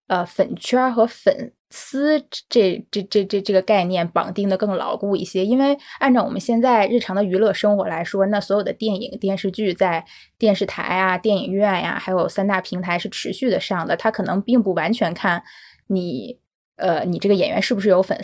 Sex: female